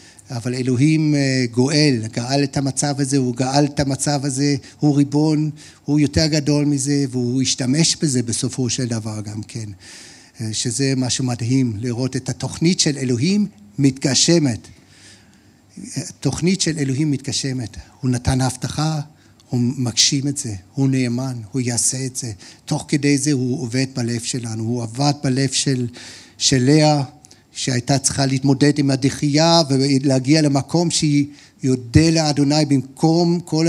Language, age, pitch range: Hebrew, 60-79, 125-150 Hz